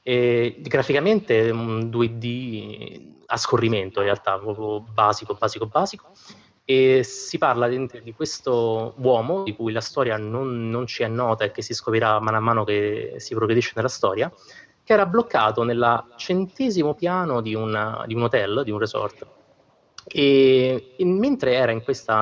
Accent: native